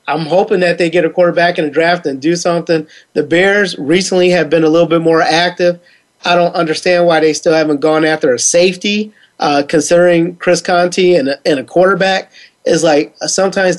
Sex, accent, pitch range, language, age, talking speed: male, American, 155-180 Hz, English, 30-49, 200 wpm